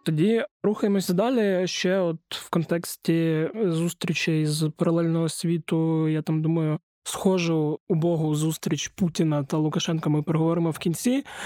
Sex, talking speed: male, 125 wpm